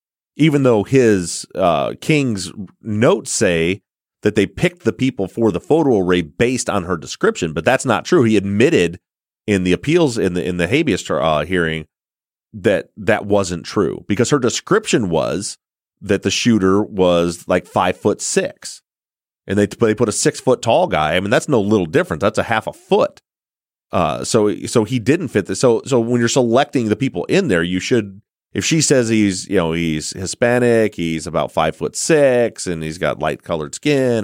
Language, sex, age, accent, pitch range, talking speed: English, male, 30-49, American, 90-120 Hz, 195 wpm